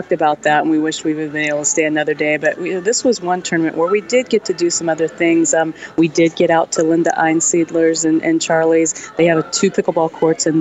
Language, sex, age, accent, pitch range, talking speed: English, female, 30-49, American, 155-165 Hz, 265 wpm